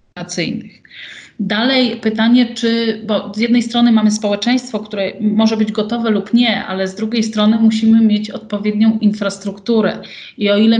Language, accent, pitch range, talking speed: Polish, native, 195-225 Hz, 145 wpm